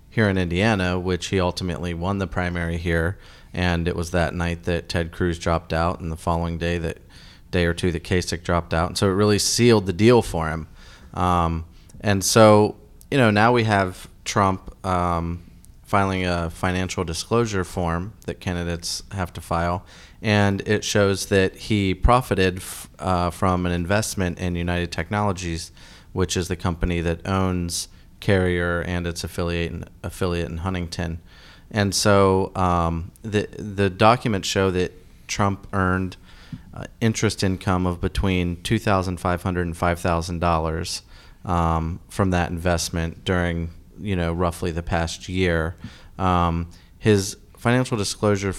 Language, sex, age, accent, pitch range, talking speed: English, male, 30-49, American, 85-95 Hz, 150 wpm